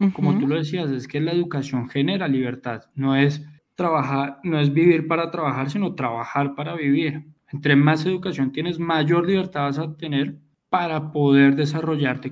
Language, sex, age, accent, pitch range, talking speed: Spanish, male, 20-39, Colombian, 140-165 Hz, 165 wpm